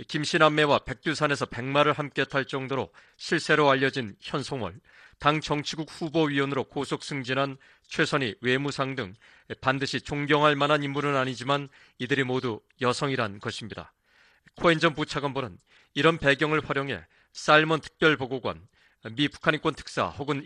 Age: 40-59